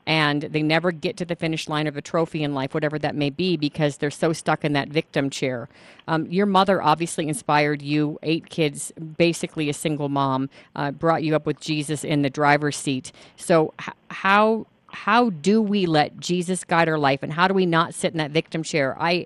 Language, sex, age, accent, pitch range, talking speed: English, female, 40-59, American, 150-175 Hz, 210 wpm